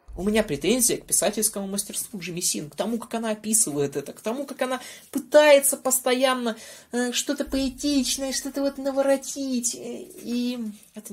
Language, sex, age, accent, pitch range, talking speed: Russian, male, 20-39, native, 145-225 Hz, 140 wpm